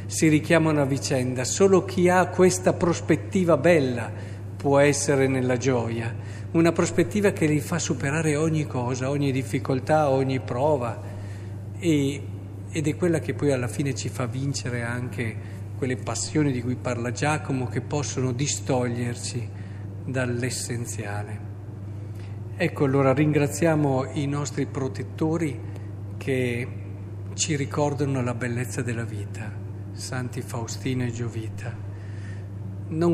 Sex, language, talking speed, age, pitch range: male, Italian, 120 wpm, 50-69, 105-140 Hz